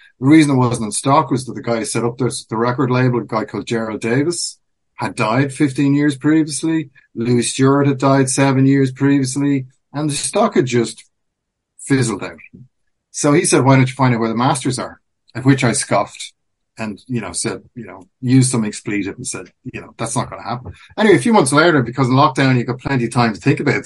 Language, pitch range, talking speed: English, 115-140 Hz, 230 wpm